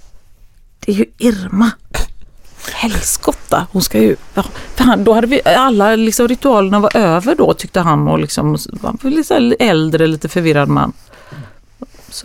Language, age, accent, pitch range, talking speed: English, 30-49, Swedish, 155-205 Hz, 130 wpm